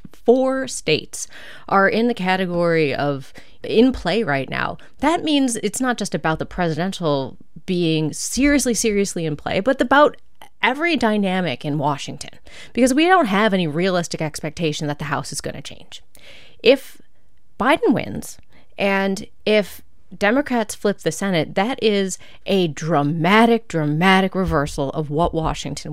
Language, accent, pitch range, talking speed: English, American, 155-210 Hz, 145 wpm